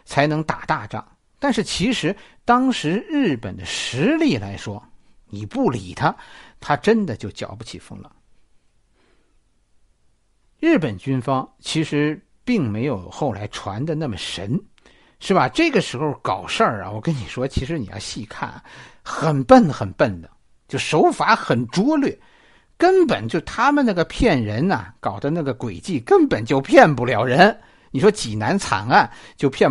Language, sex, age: Chinese, male, 50-69